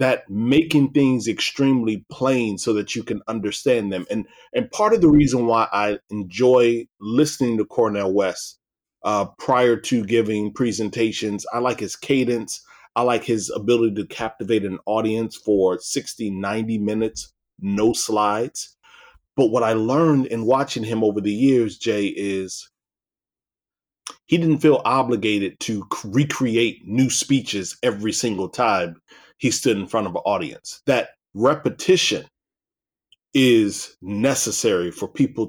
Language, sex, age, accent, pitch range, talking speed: English, male, 30-49, American, 100-130 Hz, 140 wpm